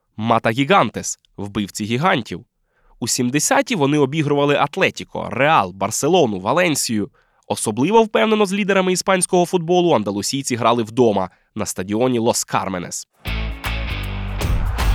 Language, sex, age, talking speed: Ukrainian, male, 20-39, 95 wpm